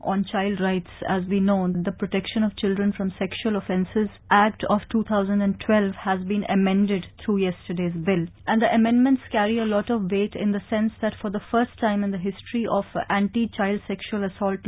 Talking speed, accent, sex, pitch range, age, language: 185 wpm, Indian, female, 195-225 Hz, 30-49, English